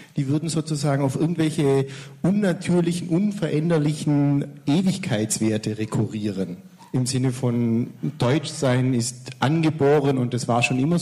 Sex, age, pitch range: male, 50-69, 120-160 Hz